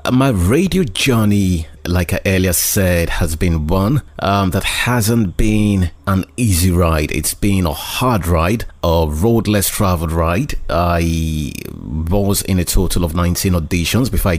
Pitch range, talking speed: 85-100 Hz, 145 wpm